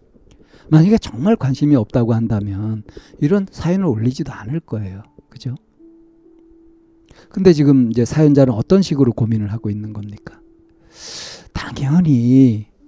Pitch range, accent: 115-170 Hz, native